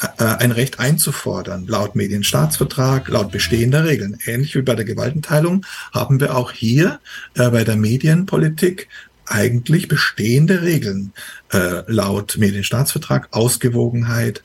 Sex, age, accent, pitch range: male, 50-69, German, 105-140 Hz